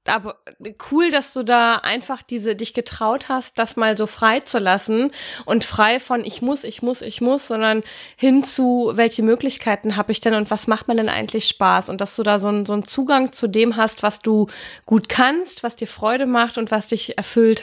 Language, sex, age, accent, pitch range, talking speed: German, female, 20-39, German, 210-245 Hz, 220 wpm